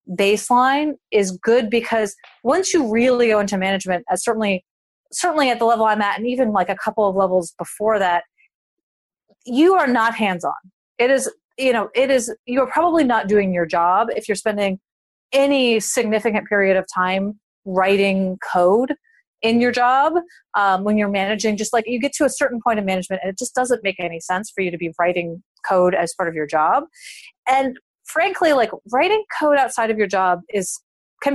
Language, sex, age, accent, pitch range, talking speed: English, female, 30-49, American, 190-250 Hz, 190 wpm